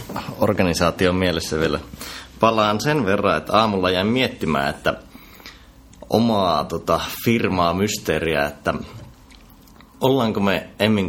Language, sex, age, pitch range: Finnish, male, 30-49, 80-100 Hz